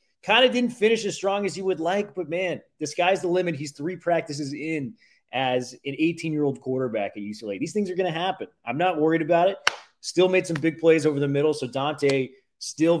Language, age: English, 30-49